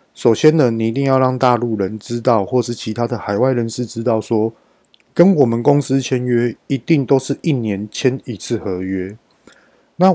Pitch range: 110-145 Hz